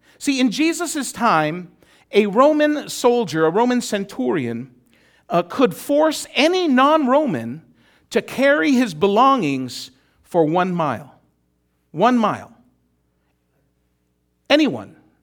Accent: American